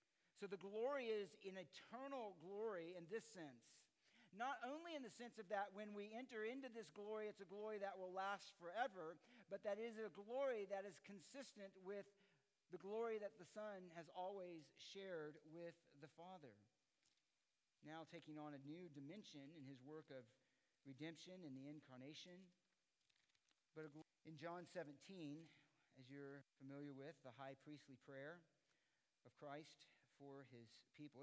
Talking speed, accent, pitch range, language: 160 wpm, American, 145-205 Hz, English